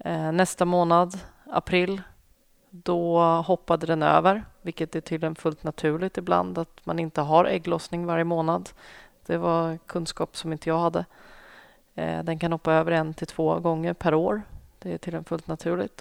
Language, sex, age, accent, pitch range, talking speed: Swedish, female, 30-49, native, 160-185 Hz, 165 wpm